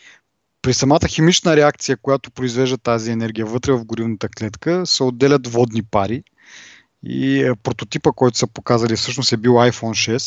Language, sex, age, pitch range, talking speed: Bulgarian, male, 20-39, 115-140 Hz, 160 wpm